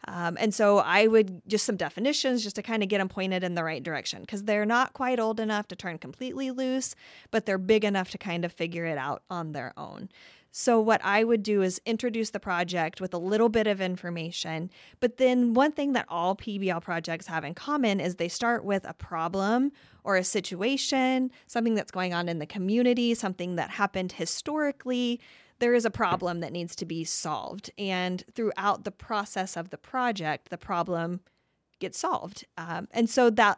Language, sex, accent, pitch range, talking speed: English, female, American, 180-230 Hz, 200 wpm